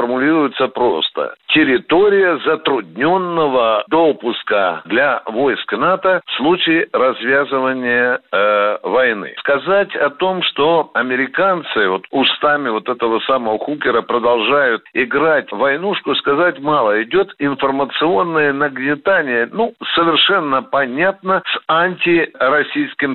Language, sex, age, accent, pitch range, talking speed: Russian, male, 60-79, native, 155-225 Hz, 100 wpm